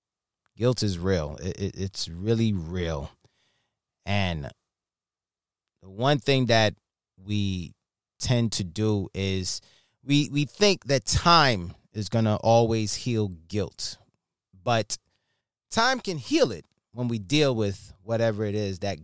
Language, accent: English, American